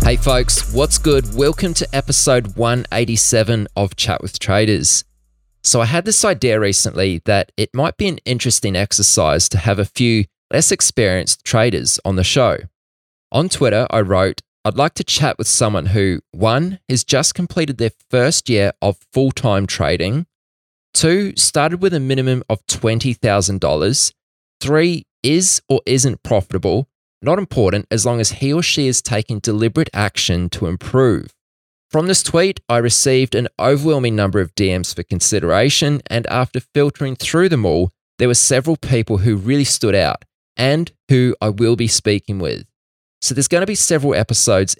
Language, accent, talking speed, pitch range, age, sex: English, Australian, 165 wpm, 100-135 Hz, 20-39, male